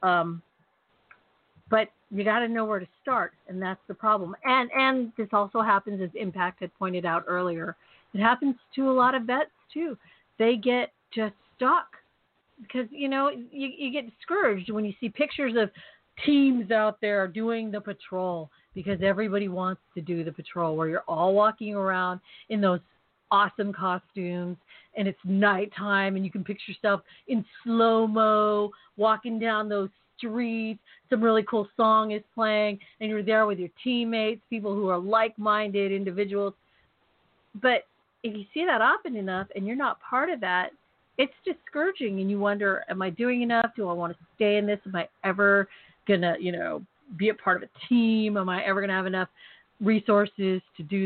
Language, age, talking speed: English, 40-59, 180 wpm